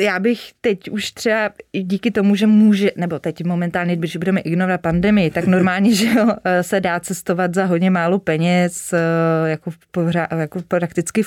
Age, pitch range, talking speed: 20-39, 175-210 Hz, 150 wpm